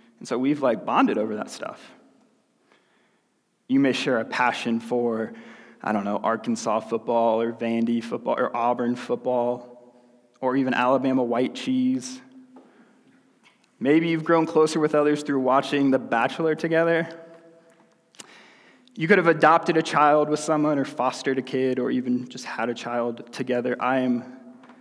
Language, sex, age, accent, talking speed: English, male, 20-39, American, 150 wpm